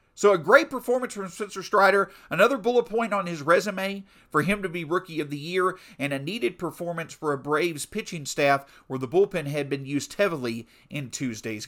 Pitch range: 150-205 Hz